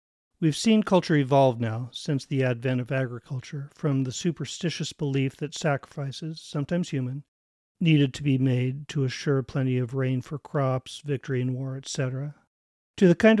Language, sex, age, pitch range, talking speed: English, male, 40-59, 130-155 Hz, 160 wpm